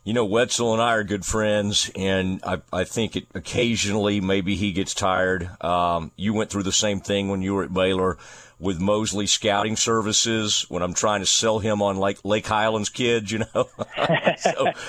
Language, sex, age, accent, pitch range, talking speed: English, male, 40-59, American, 100-125 Hz, 195 wpm